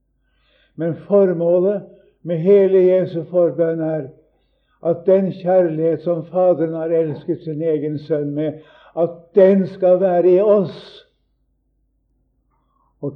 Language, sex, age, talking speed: English, male, 60-79, 120 wpm